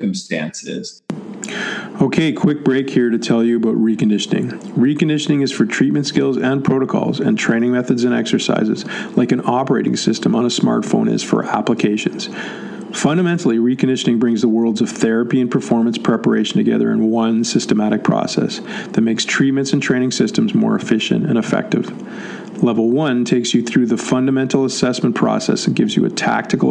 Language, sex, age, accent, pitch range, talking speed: English, male, 50-69, American, 115-135 Hz, 160 wpm